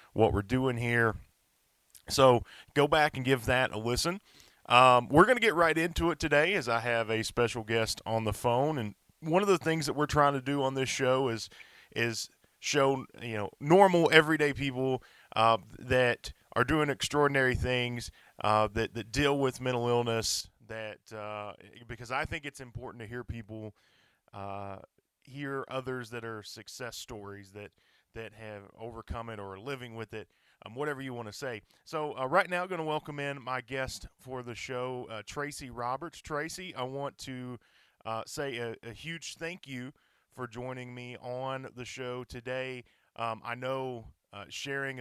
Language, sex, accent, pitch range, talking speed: English, male, American, 115-135 Hz, 185 wpm